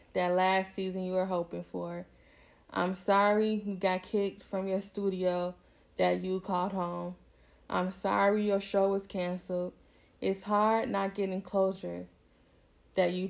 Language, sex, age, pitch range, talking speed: English, female, 20-39, 180-200 Hz, 145 wpm